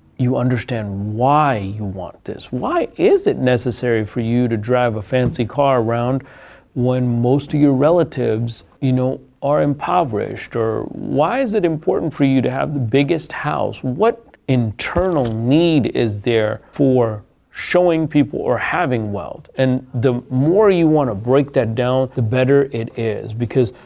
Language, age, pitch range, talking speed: English, 40-59, 115-140 Hz, 160 wpm